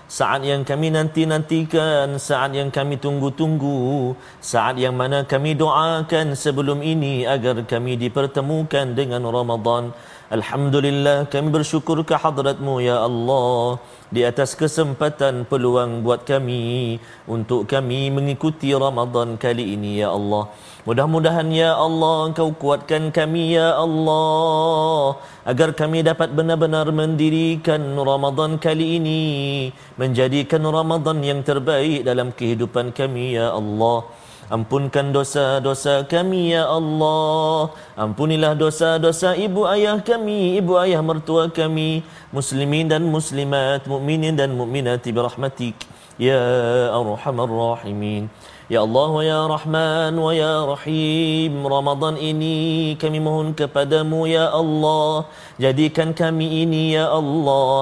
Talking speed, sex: 125 wpm, male